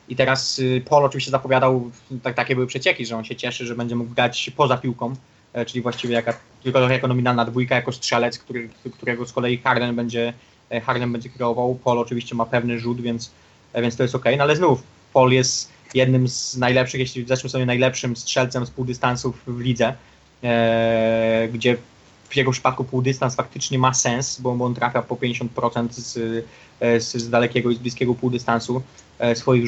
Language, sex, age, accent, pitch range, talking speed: Polish, male, 20-39, native, 120-135 Hz, 175 wpm